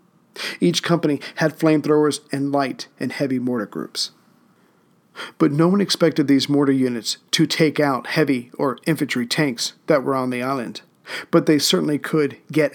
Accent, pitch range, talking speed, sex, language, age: American, 130-160 Hz, 160 wpm, male, English, 50-69